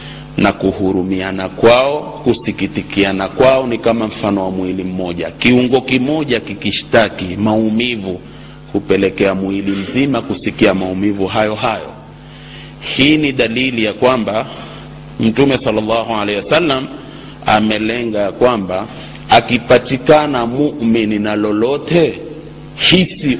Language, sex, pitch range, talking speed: Swahili, male, 100-140 Hz, 95 wpm